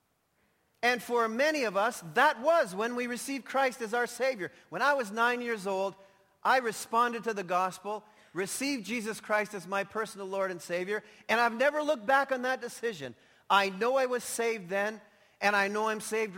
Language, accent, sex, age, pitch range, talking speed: English, American, male, 40-59, 210-270 Hz, 195 wpm